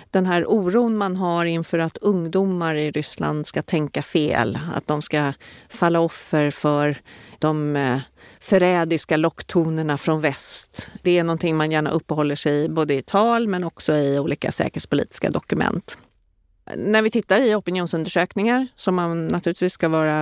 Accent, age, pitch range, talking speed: native, 30-49, 150-175 Hz, 150 wpm